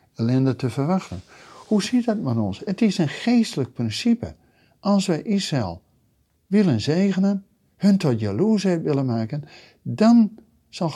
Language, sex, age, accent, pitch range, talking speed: Dutch, male, 60-79, Dutch, 110-165 Hz, 135 wpm